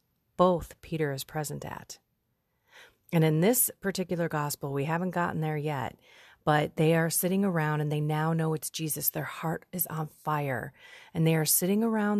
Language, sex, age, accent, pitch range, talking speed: English, female, 40-59, American, 150-190 Hz, 175 wpm